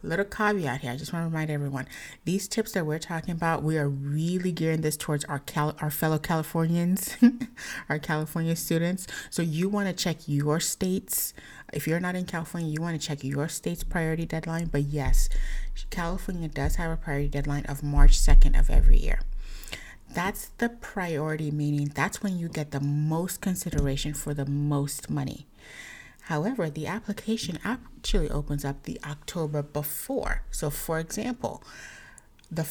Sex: female